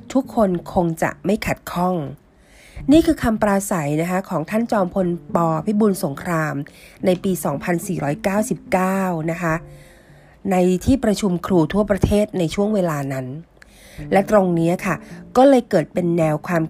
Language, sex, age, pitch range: Thai, female, 30-49, 165-215 Hz